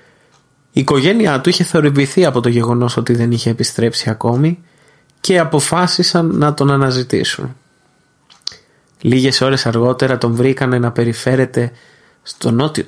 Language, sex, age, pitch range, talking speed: Greek, male, 20-39, 120-150 Hz, 125 wpm